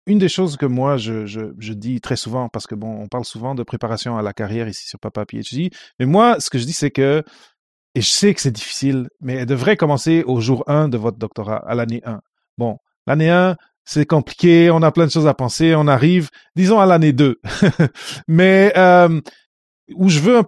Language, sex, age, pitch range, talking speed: French, male, 30-49, 120-160 Hz, 225 wpm